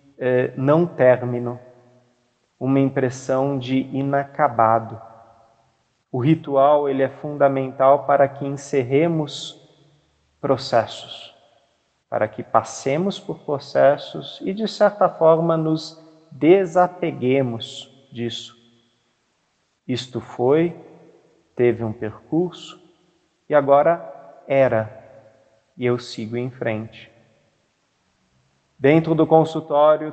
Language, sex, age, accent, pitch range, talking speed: Portuguese, male, 40-59, Brazilian, 120-145 Hz, 85 wpm